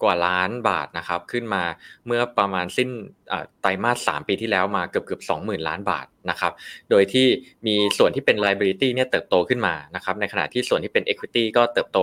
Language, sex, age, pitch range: Thai, male, 20-39, 100-130 Hz